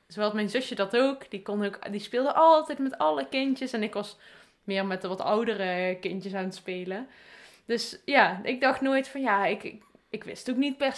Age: 20-39